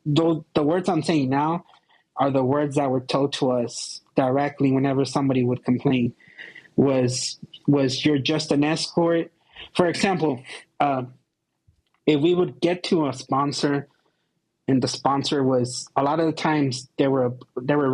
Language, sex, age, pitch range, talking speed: English, male, 20-39, 130-145 Hz, 160 wpm